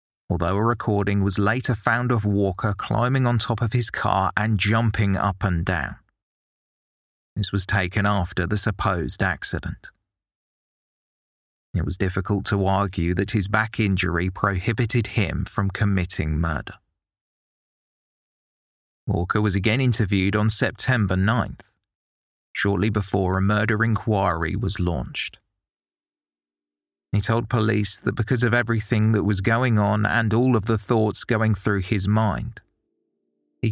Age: 30-49